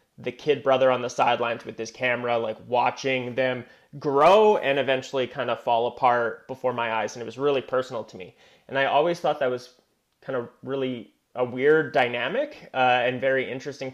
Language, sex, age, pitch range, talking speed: English, male, 30-49, 120-135 Hz, 195 wpm